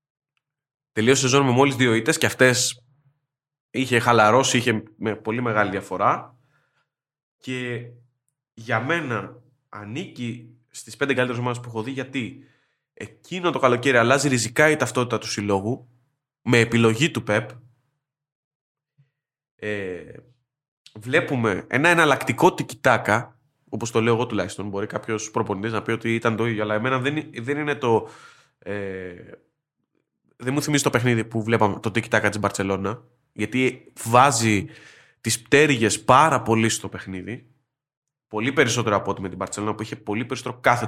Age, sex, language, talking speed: 20-39, male, Greek, 140 wpm